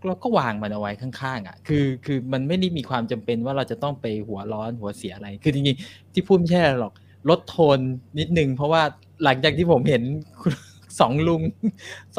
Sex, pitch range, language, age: male, 115-165 Hz, Thai, 20-39